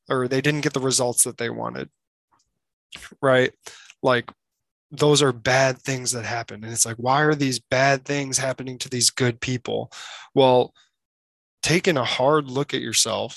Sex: male